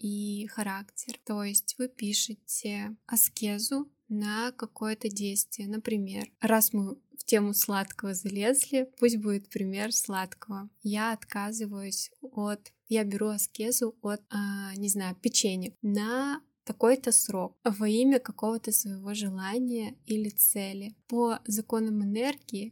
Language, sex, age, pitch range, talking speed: Russian, female, 20-39, 200-225 Hz, 120 wpm